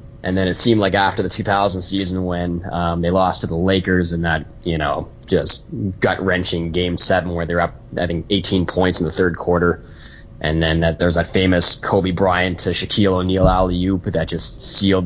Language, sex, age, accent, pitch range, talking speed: English, male, 20-39, American, 85-100 Hz, 195 wpm